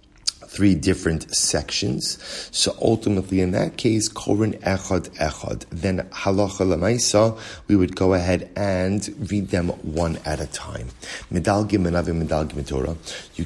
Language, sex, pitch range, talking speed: English, male, 80-100 Hz, 125 wpm